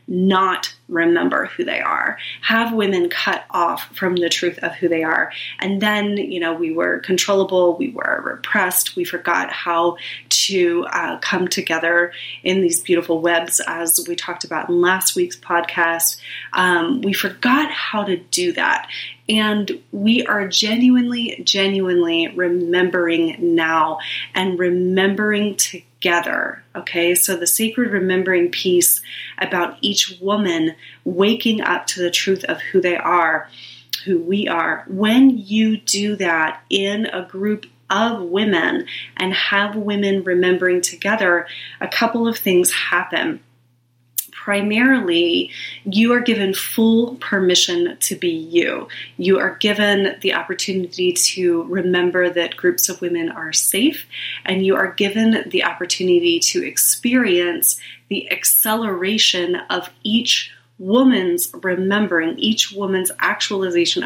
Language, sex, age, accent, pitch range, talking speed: English, female, 30-49, American, 175-215 Hz, 135 wpm